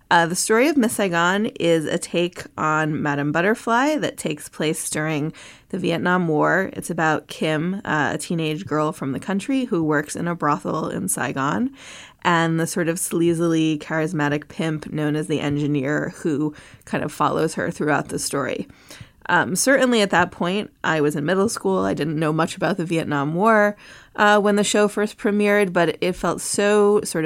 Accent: American